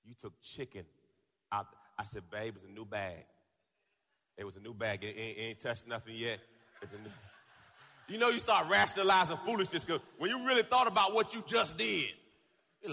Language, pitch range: English, 130-185 Hz